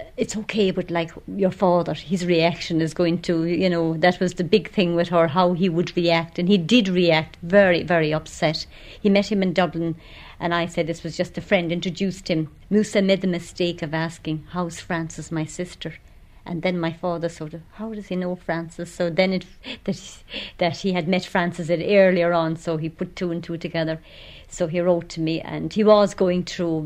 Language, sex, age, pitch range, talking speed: English, female, 50-69, 160-185 Hz, 215 wpm